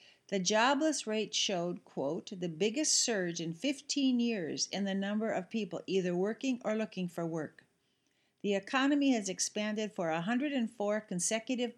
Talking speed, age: 150 wpm, 50-69